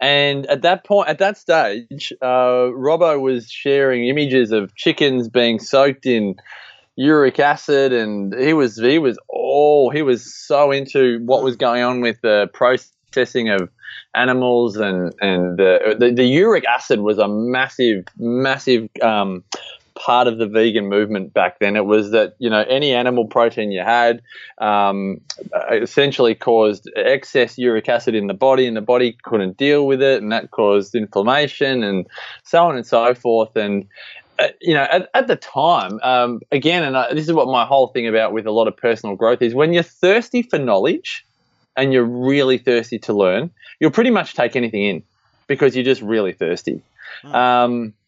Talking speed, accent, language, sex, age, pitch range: 175 wpm, Australian, English, male, 20-39, 115-140 Hz